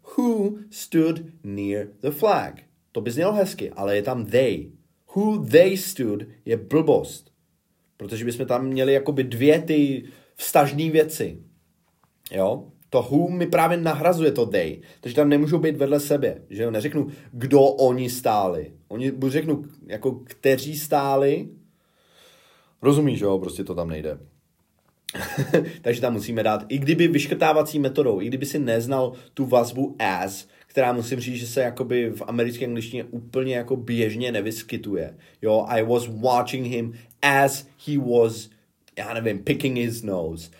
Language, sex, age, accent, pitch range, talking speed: Czech, male, 30-49, native, 115-145 Hz, 145 wpm